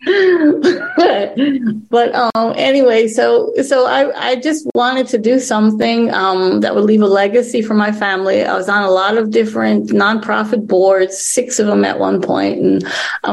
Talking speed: 175 wpm